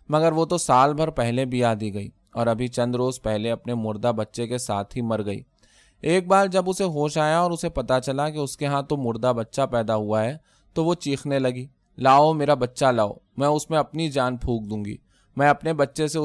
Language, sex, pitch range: Urdu, male, 115-150 Hz